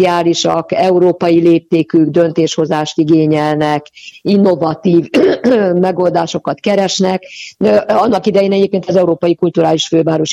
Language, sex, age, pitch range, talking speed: Hungarian, female, 50-69, 150-185 Hz, 80 wpm